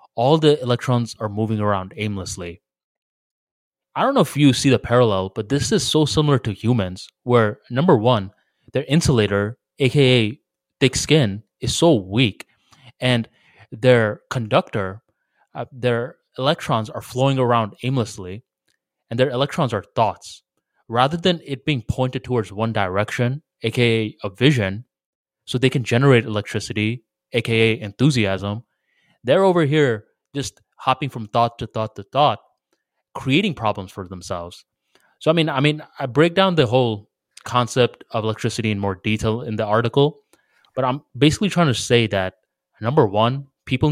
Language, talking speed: English, 150 wpm